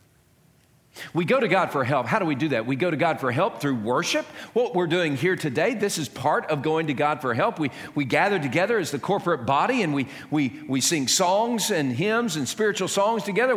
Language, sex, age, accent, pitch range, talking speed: English, male, 50-69, American, 165-240 Hz, 235 wpm